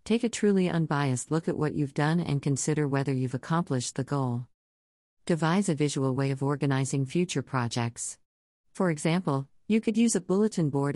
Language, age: English, 50-69